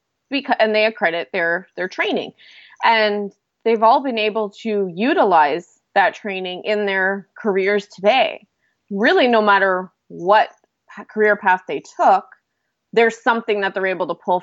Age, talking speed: 20-39, 140 wpm